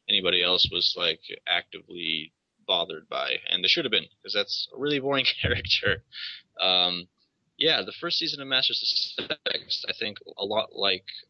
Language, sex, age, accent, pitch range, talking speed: English, male, 20-39, American, 90-125 Hz, 170 wpm